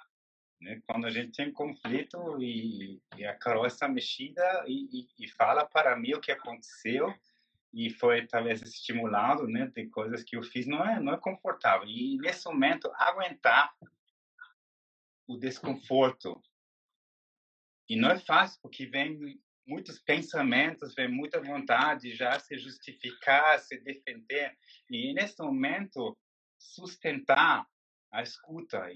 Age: 30-49